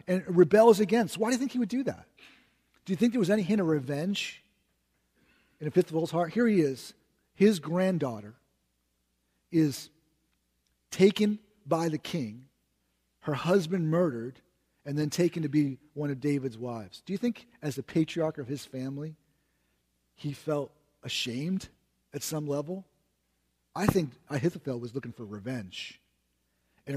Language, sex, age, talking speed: English, male, 40-59, 150 wpm